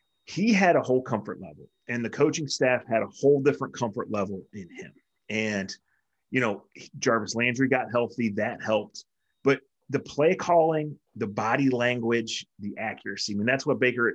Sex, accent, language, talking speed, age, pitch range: male, American, English, 175 wpm, 30-49, 100-130 Hz